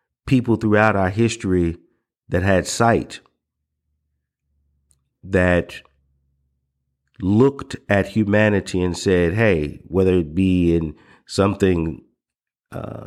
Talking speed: 90 wpm